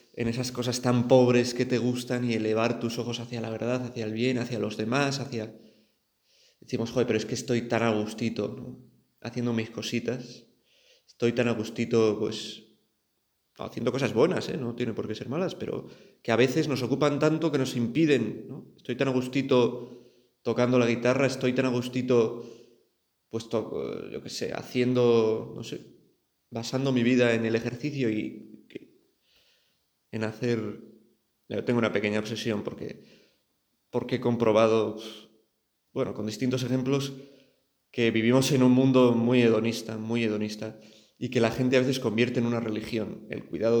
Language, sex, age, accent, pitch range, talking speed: Spanish, male, 20-39, Spanish, 110-125 Hz, 165 wpm